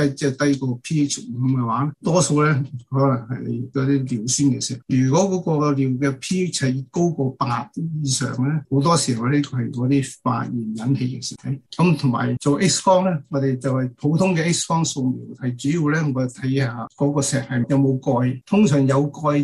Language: Chinese